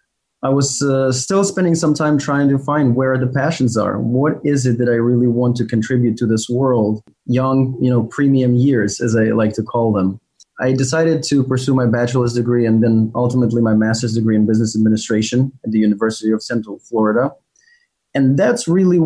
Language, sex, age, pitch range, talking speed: English, male, 20-39, 115-140 Hz, 195 wpm